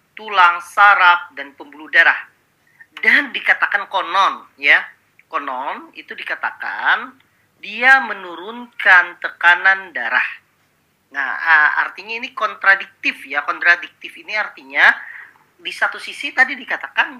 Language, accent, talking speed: Indonesian, native, 100 wpm